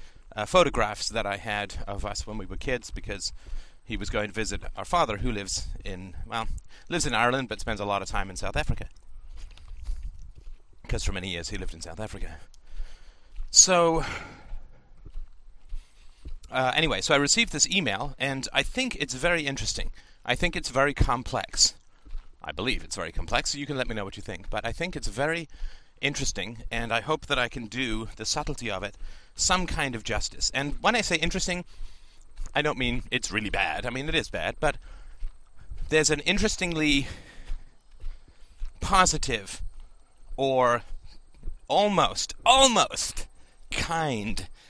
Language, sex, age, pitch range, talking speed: English, male, 30-49, 85-135 Hz, 170 wpm